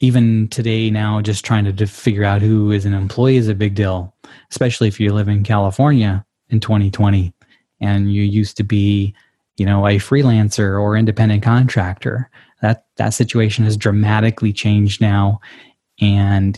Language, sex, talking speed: English, male, 165 wpm